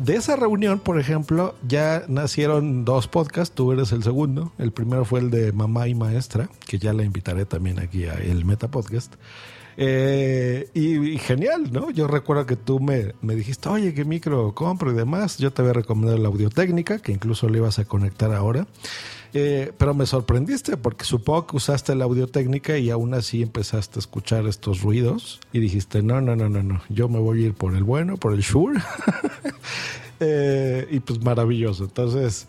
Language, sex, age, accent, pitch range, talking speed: Spanish, male, 50-69, Mexican, 115-150 Hz, 195 wpm